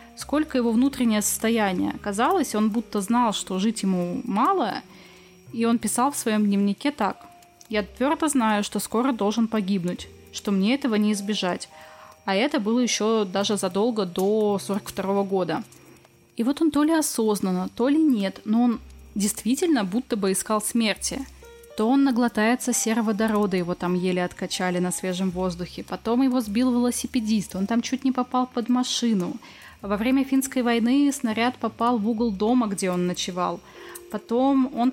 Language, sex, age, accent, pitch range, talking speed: Russian, female, 20-39, native, 200-245 Hz, 160 wpm